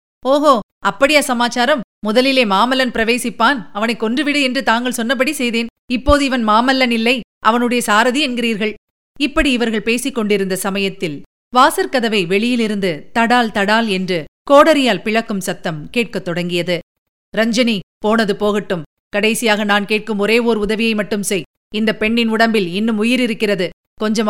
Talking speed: 125 wpm